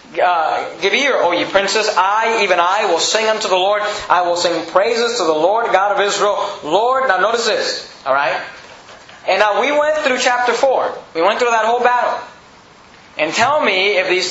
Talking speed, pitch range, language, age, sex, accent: 200 wpm, 190-265 Hz, English, 30-49, male, American